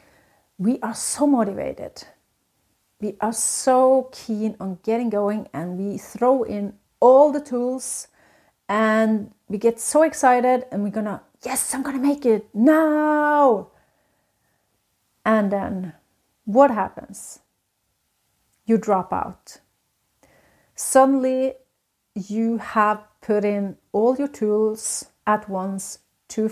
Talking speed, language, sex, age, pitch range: 115 wpm, English, female, 40-59, 195-235 Hz